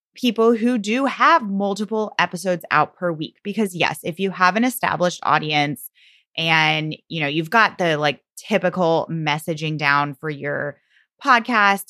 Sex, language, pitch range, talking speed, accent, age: female, English, 165-235 Hz, 160 wpm, American, 20-39